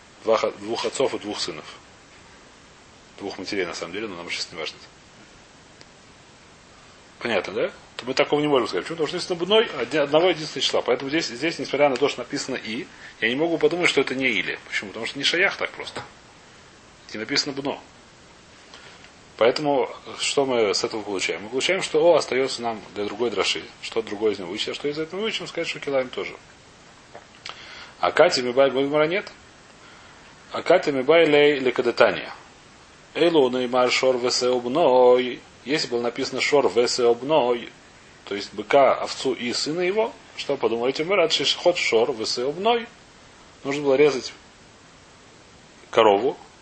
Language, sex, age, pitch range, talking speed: Russian, male, 30-49, 125-165 Hz, 160 wpm